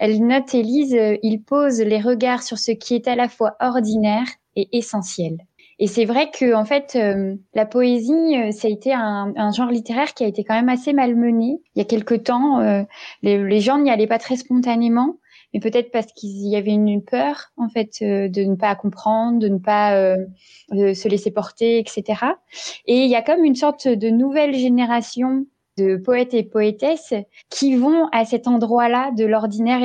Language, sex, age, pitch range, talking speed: French, female, 20-39, 210-255 Hz, 205 wpm